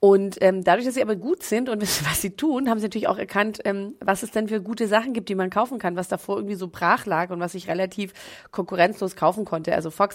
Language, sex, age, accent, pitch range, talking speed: German, female, 30-49, German, 185-225 Hz, 265 wpm